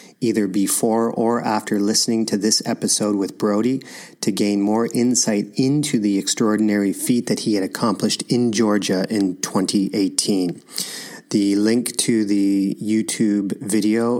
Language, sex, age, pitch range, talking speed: English, male, 40-59, 110-125 Hz, 135 wpm